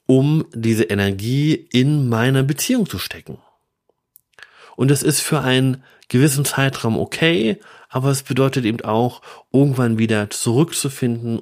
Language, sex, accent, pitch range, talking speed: German, male, German, 110-145 Hz, 125 wpm